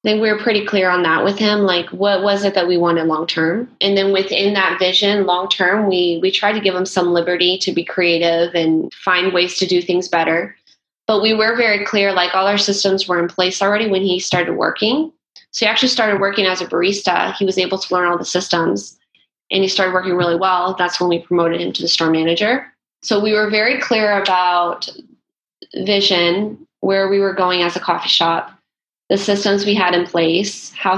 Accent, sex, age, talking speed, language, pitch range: American, female, 20-39, 215 wpm, English, 175-205 Hz